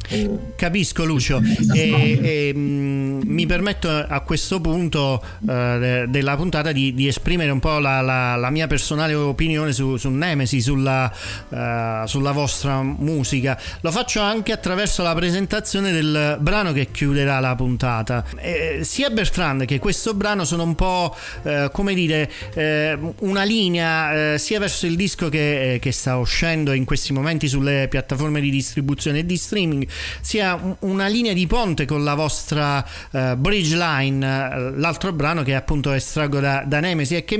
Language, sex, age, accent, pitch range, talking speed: Italian, male, 40-59, native, 135-180 Hz, 160 wpm